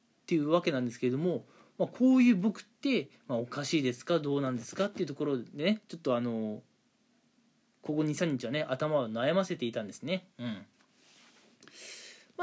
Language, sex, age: Japanese, male, 20-39